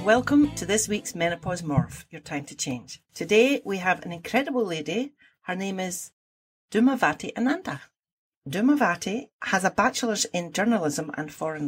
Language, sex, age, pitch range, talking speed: English, female, 60-79, 160-225 Hz, 150 wpm